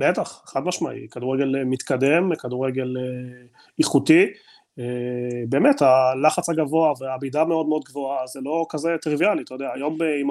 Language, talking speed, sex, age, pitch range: Hebrew, 130 wpm, male, 30-49, 140-175 Hz